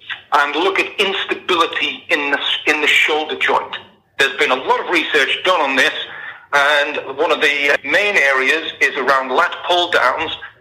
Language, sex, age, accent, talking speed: English, male, 50-69, British, 165 wpm